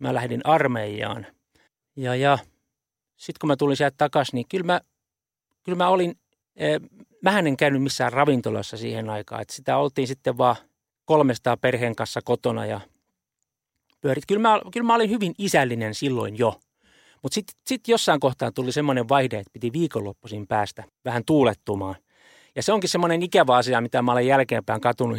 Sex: male